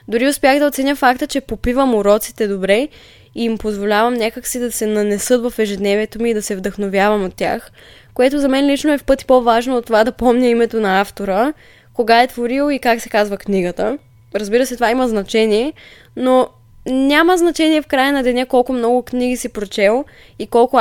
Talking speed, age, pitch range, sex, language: 195 wpm, 10-29, 205-250 Hz, female, Bulgarian